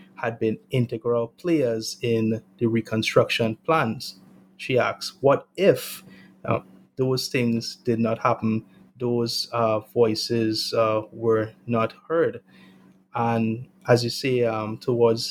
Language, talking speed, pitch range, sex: English, 120 wpm, 110-120 Hz, male